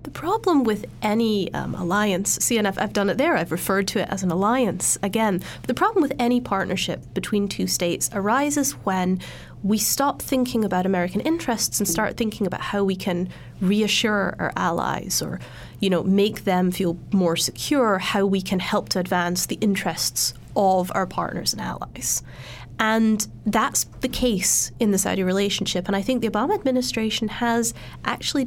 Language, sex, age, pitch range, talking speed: English, female, 30-49, 190-230 Hz, 175 wpm